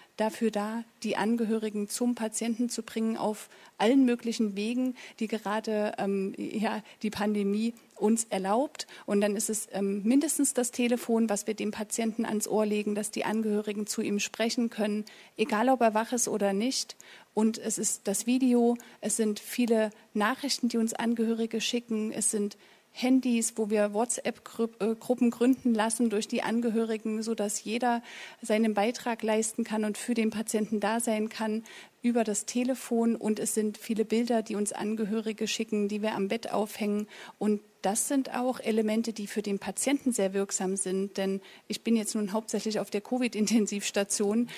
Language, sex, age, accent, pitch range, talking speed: German, female, 40-59, German, 205-230 Hz, 165 wpm